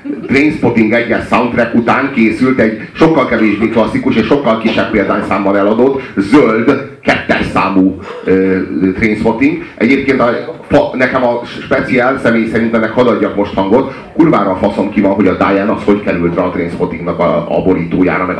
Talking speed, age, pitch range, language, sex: 165 wpm, 30-49, 100-135 Hz, Hungarian, male